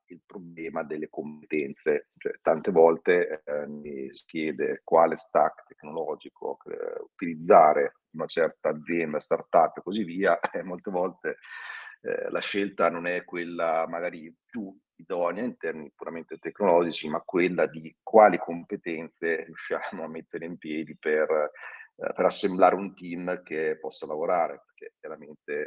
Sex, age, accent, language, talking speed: male, 40-59, native, Italian, 140 wpm